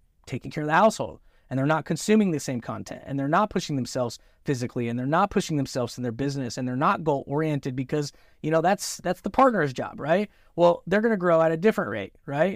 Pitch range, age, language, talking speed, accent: 120-165 Hz, 20-39, English, 235 wpm, American